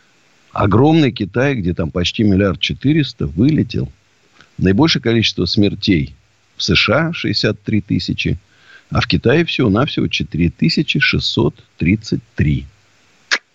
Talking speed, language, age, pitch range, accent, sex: 95 wpm, Russian, 50-69, 85-120 Hz, native, male